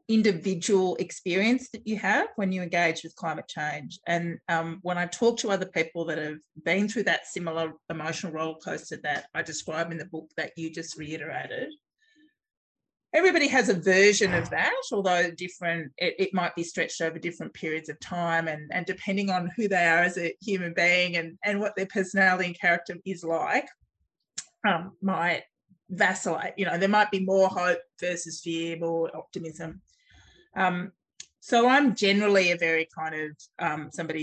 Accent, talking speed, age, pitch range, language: Australian, 175 wpm, 30-49, 165-200 Hz, English